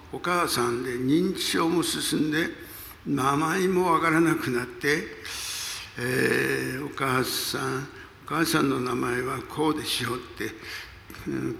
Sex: male